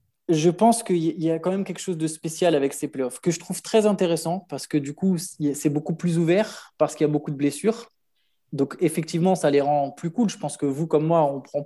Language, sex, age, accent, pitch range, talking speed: French, male, 20-39, French, 155-190 Hz, 250 wpm